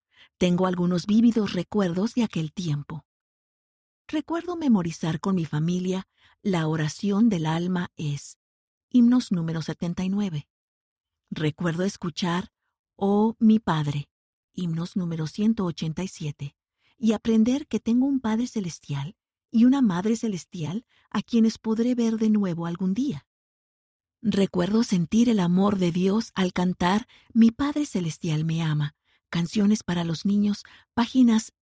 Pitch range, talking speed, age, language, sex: 170-225 Hz, 125 wpm, 50-69, Spanish, female